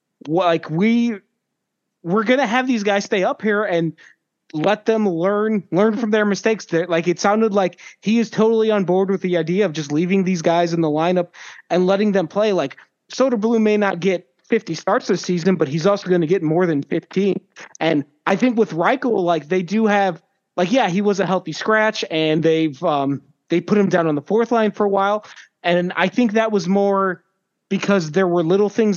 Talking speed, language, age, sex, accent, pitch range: 210 wpm, English, 30-49, male, American, 165-205 Hz